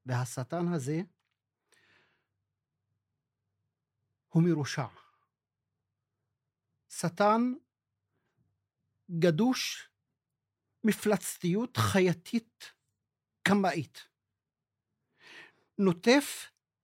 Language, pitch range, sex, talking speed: Hebrew, 130-215 Hz, male, 35 wpm